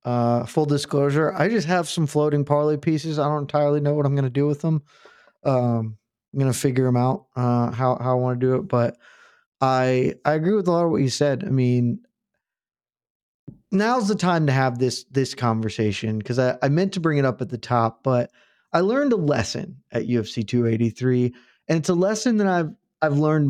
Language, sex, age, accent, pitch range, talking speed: English, male, 20-39, American, 120-155 Hz, 215 wpm